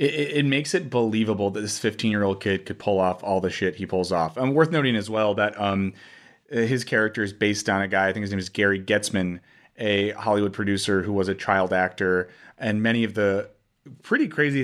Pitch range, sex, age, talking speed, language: 95-120 Hz, male, 30-49, 215 wpm, English